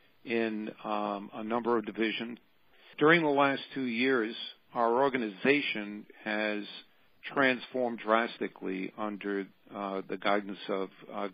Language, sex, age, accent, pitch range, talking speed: English, male, 50-69, American, 105-120 Hz, 115 wpm